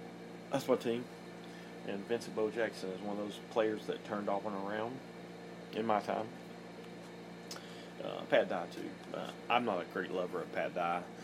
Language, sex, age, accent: English, male, 30-49, American